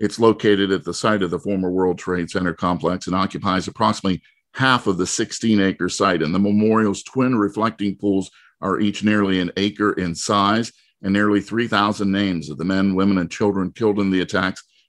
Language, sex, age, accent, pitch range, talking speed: English, male, 50-69, American, 90-110 Hz, 190 wpm